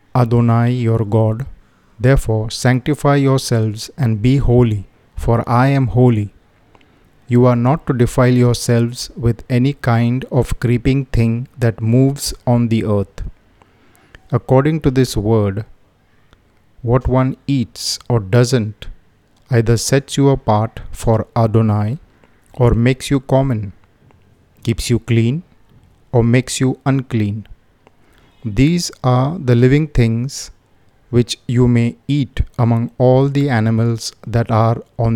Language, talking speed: Hindi, 125 wpm